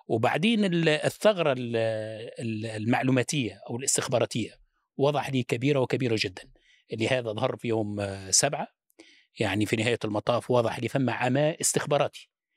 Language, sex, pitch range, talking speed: Arabic, male, 115-155 Hz, 120 wpm